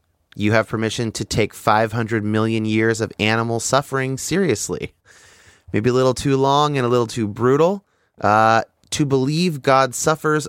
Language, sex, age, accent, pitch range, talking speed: English, male, 30-49, American, 100-125 Hz, 155 wpm